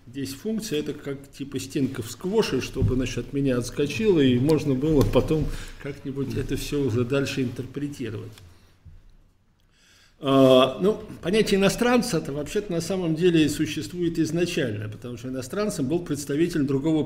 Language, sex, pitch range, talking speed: Russian, male, 120-160 Hz, 135 wpm